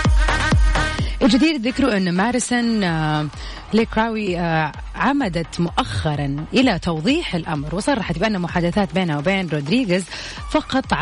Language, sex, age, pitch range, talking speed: Arabic, female, 30-49, 170-235 Hz, 95 wpm